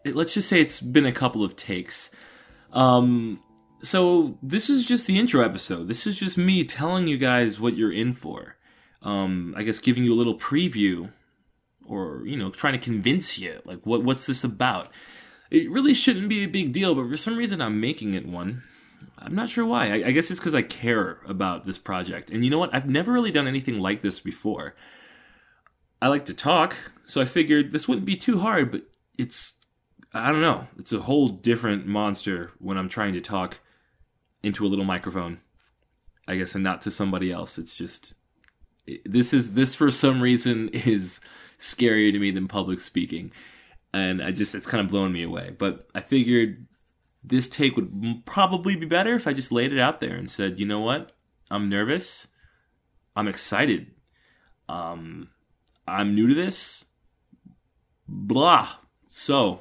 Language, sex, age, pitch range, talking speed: English, male, 20-39, 100-150 Hz, 185 wpm